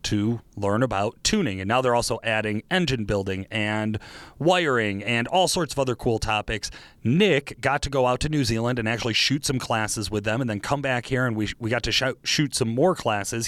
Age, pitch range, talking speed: 30-49, 105-135 Hz, 225 wpm